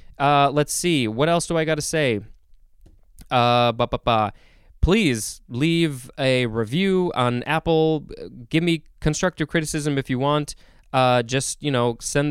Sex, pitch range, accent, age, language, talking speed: male, 115-150 Hz, American, 20-39, English, 135 wpm